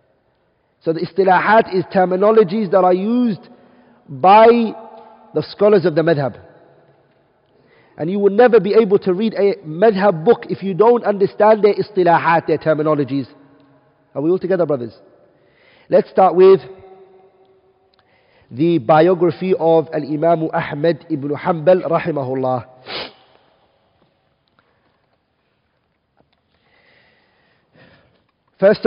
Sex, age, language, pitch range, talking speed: male, 50-69, English, 165-215 Hz, 105 wpm